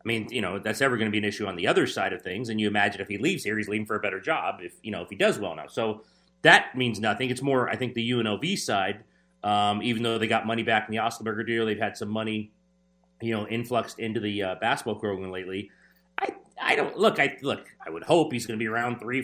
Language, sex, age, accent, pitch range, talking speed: English, male, 30-49, American, 110-140 Hz, 275 wpm